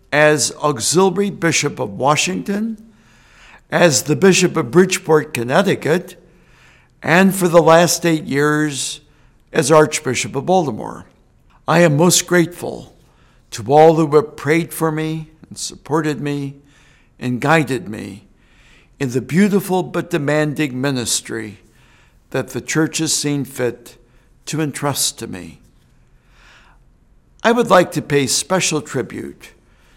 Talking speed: 120 wpm